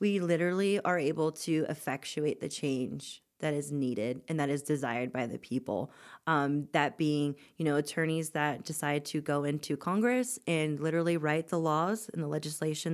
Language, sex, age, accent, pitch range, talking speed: English, female, 20-39, American, 150-175 Hz, 175 wpm